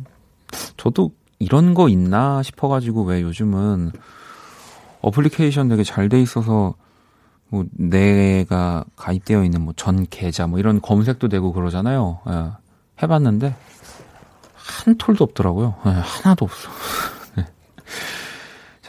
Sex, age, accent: male, 40-59, native